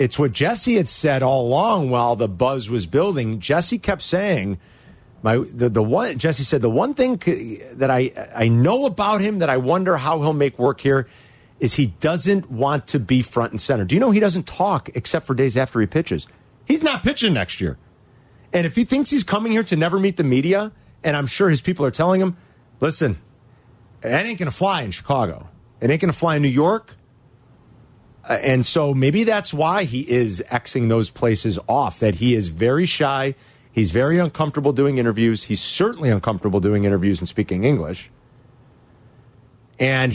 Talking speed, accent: 195 wpm, American